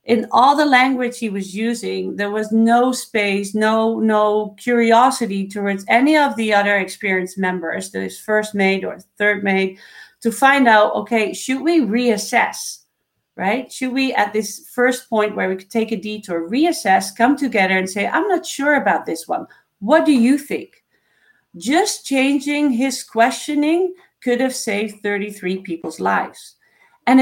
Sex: female